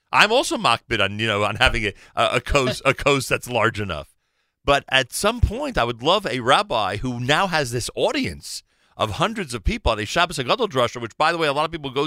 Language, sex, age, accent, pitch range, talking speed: English, male, 40-59, American, 110-145 Hz, 255 wpm